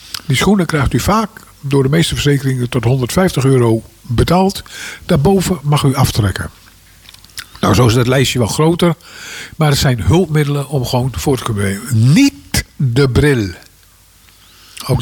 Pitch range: 105-160 Hz